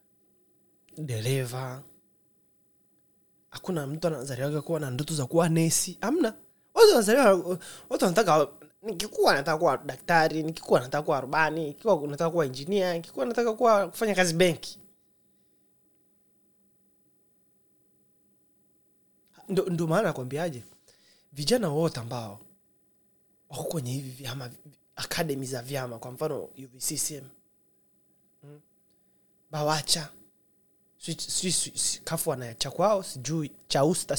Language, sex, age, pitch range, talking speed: Swahili, male, 20-39, 135-180 Hz, 100 wpm